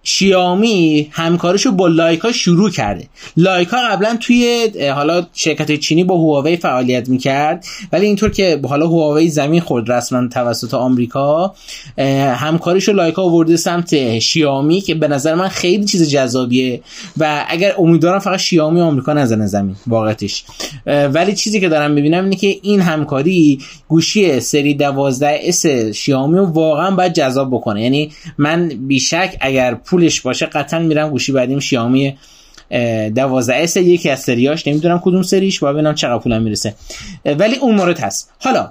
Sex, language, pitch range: male, Persian, 145-185 Hz